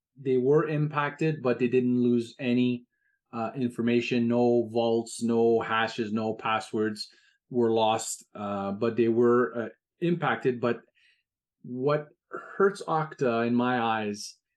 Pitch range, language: 115-135 Hz, English